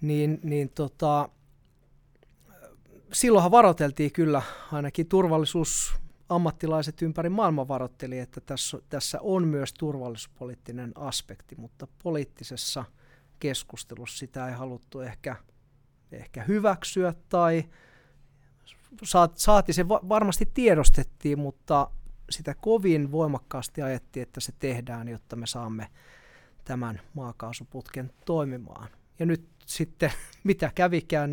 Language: Finnish